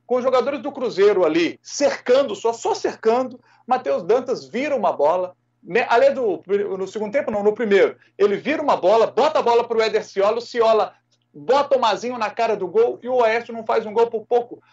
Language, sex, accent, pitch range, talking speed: Portuguese, male, Brazilian, 225-355 Hz, 215 wpm